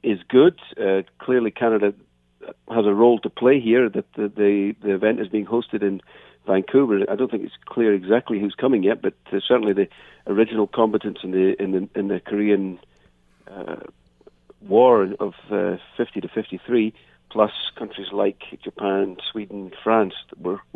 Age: 50-69